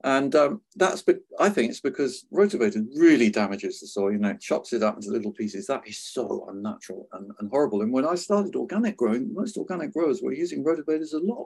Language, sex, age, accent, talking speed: English, male, 50-69, British, 220 wpm